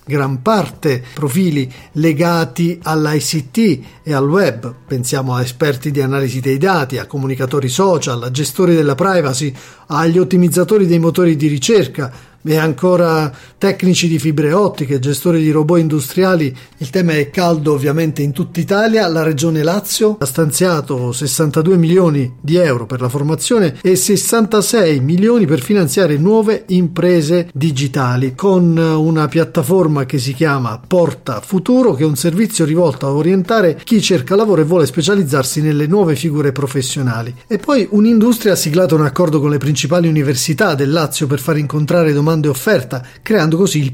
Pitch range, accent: 140-180 Hz, native